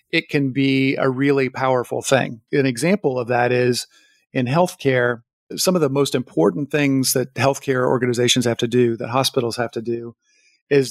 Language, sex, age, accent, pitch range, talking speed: English, male, 50-69, American, 125-140 Hz, 175 wpm